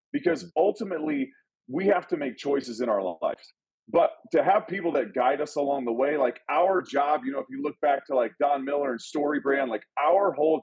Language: English